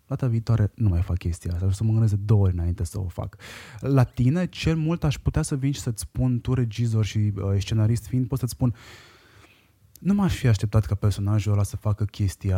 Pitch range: 100-125 Hz